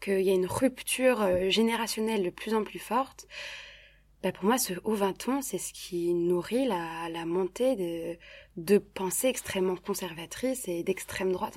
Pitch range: 180-215 Hz